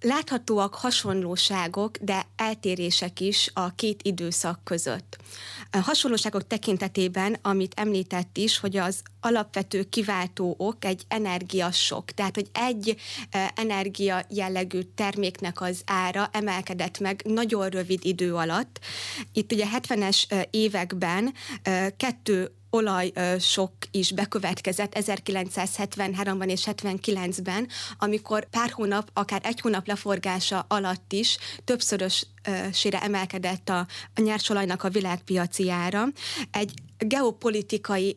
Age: 20-39